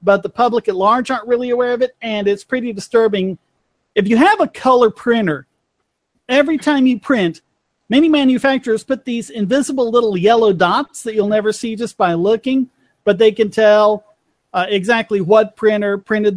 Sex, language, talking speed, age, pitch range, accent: male, English, 175 wpm, 40-59, 195-240 Hz, American